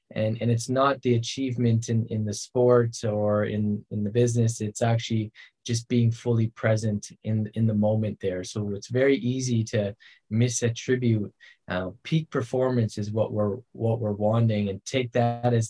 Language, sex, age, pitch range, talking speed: English, male, 20-39, 110-130 Hz, 170 wpm